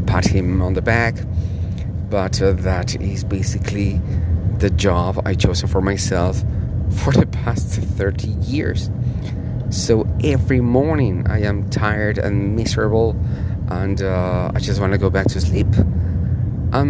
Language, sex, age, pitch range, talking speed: English, male, 40-59, 95-110 Hz, 140 wpm